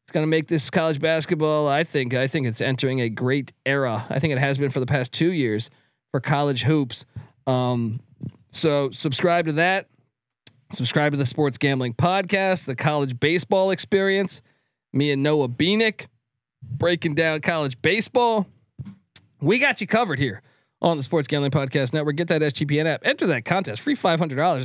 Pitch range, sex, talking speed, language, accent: 135-175 Hz, male, 175 wpm, English, American